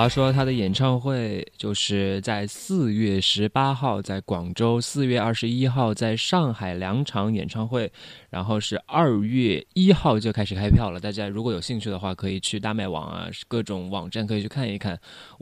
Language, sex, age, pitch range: Chinese, male, 20-39, 100-125 Hz